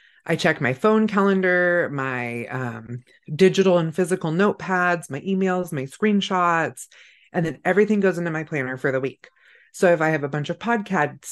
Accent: American